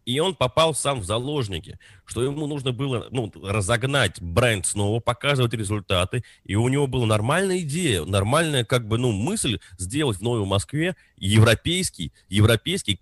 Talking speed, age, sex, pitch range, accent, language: 150 wpm, 30-49, male, 100-135 Hz, native, Russian